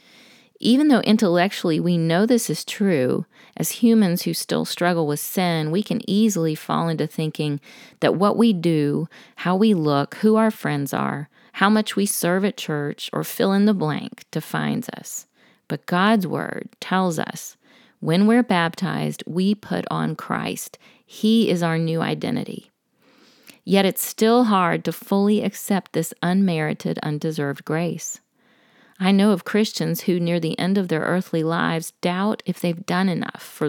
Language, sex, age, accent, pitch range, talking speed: English, female, 40-59, American, 170-220 Hz, 160 wpm